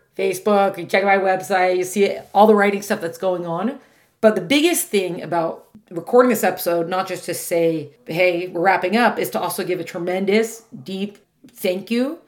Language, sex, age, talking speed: English, female, 40-59, 190 wpm